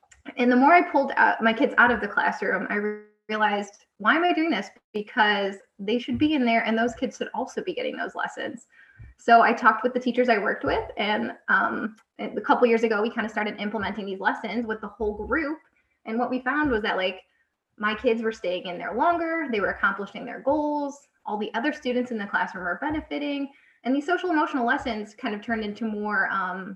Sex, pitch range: female, 210-250 Hz